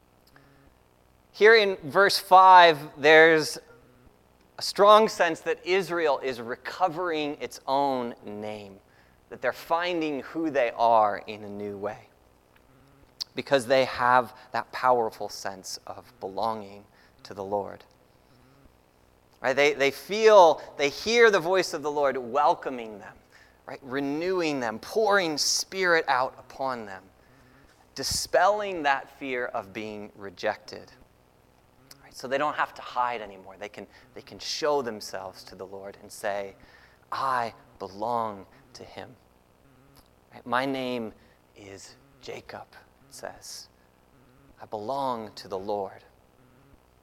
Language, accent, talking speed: English, American, 120 wpm